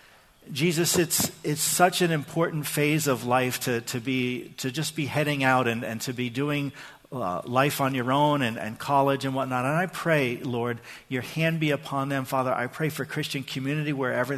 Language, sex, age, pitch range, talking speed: English, male, 50-69, 120-150 Hz, 205 wpm